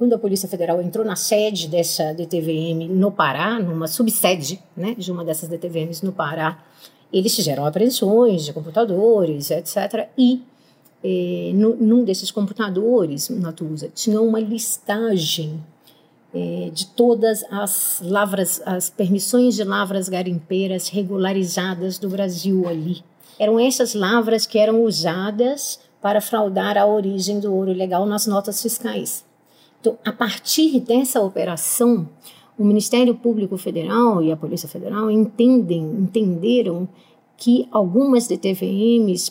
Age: 40-59